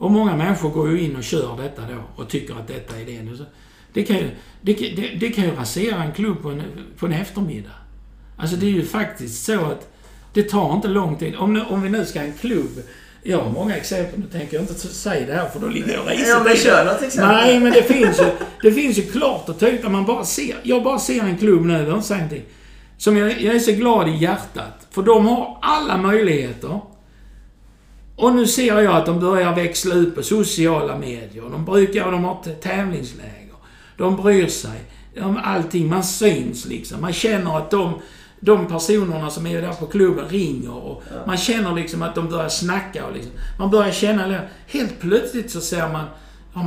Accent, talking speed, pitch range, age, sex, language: native, 205 wpm, 165-215 Hz, 60-79, male, Swedish